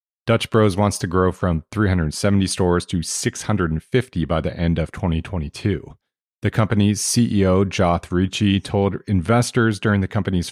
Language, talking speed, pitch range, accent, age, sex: English, 145 wpm, 85-105 Hz, American, 30-49, male